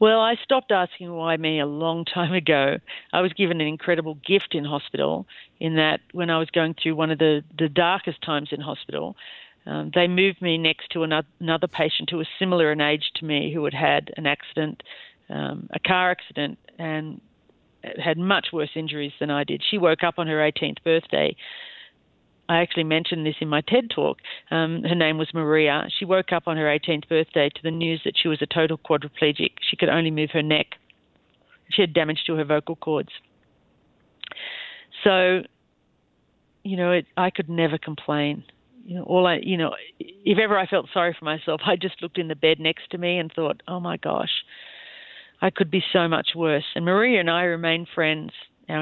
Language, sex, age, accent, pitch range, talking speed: English, female, 50-69, Australian, 155-180 Hz, 200 wpm